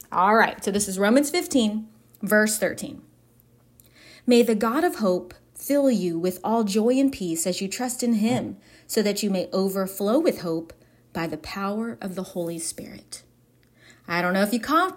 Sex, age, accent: female, 30-49, American